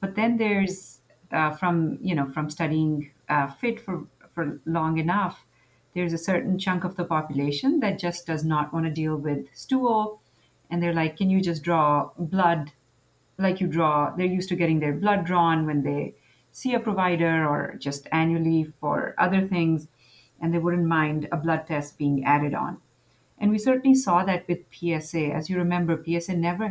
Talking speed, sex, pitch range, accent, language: 185 wpm, female, 155-190 Hz, Indian, English